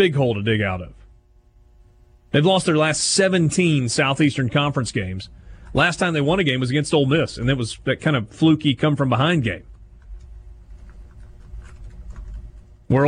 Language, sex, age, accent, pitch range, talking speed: English, male, 30-49, American, 95-155 Hz, 165 wpm